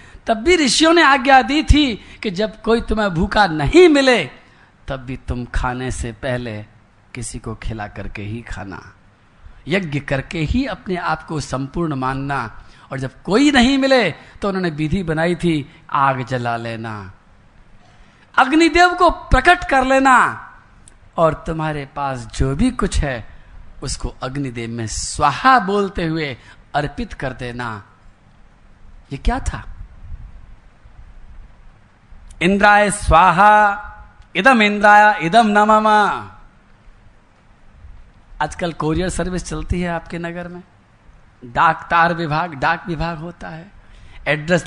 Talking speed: 125 wpm